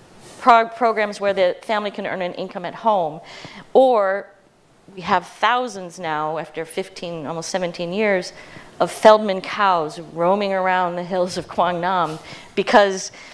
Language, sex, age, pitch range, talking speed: English, female, 40-59, 165-195 Hz, 140 wpm